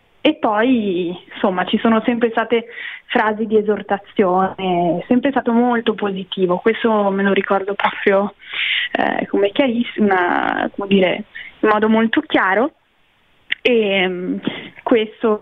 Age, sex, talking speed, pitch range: 20-39, female, 125 wpm, 205-245 Hz